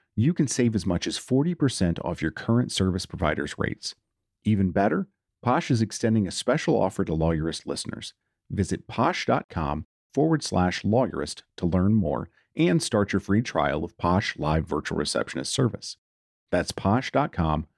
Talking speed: 150 wpm